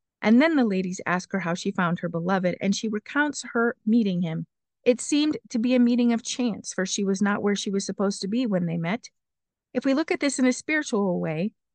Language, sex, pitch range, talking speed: English, female, 185-240 Hz, 240 wpm